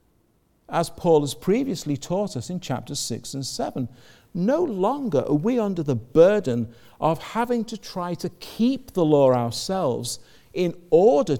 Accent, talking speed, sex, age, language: British, 155 wpm, male, 50-69, English